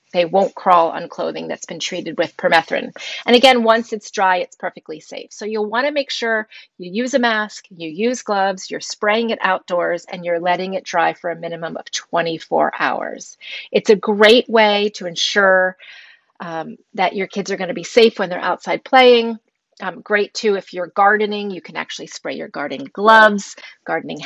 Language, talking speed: English, 195 wpm